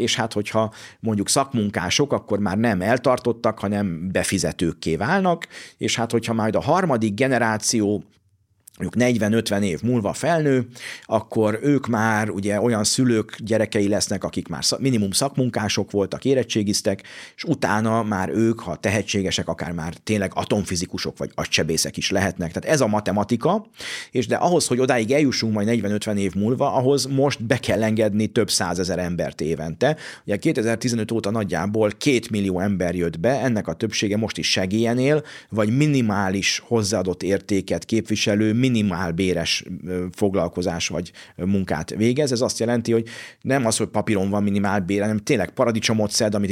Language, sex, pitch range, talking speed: Hungarian, male, 100-115 Hz, 150 wpm